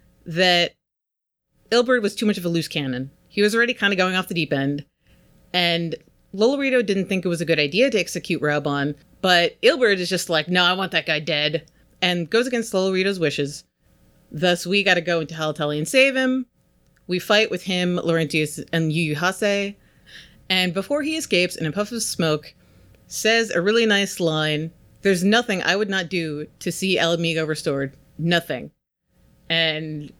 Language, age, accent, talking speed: English, 30-49, American, 180 wpm